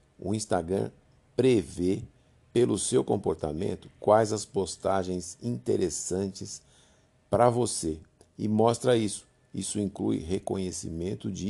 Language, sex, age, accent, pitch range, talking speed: Portuguese, male, 60-79, Brazilian, 80-105 Hz, 100 wpm